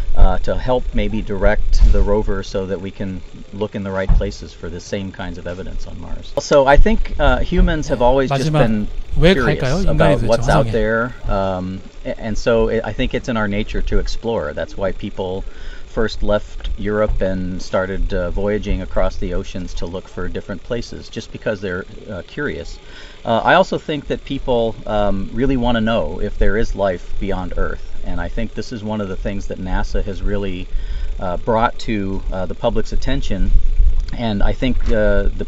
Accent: American